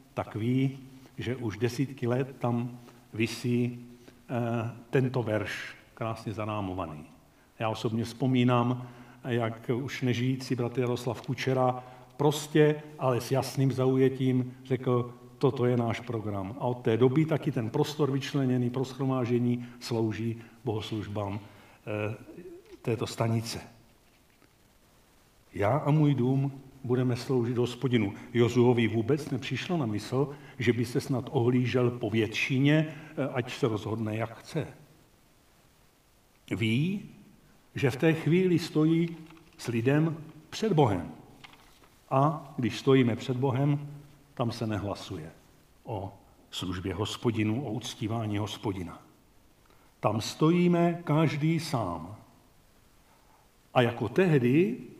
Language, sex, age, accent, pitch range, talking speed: Czech, male, 50-69, native, 115-135 Hz, 110 wpm